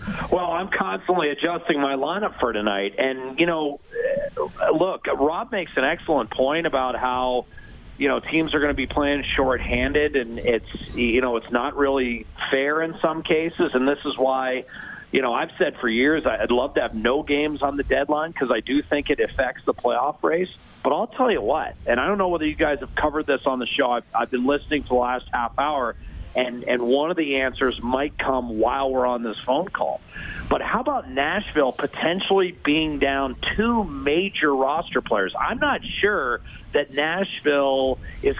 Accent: American